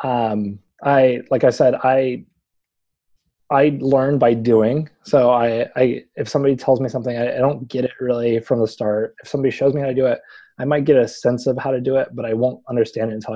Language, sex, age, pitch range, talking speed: English, male, 20-39, 110-135 Hz, 230 wpm